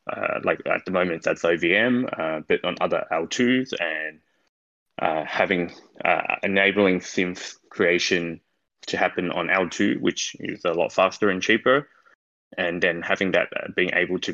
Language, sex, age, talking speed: English, male, 20-39, 155 wpm